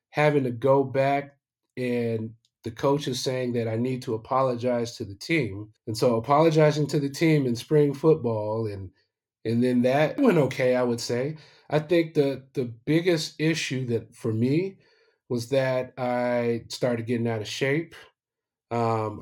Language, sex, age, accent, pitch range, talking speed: English, male, 30-49, American, 120-140 Hz, 165 wpm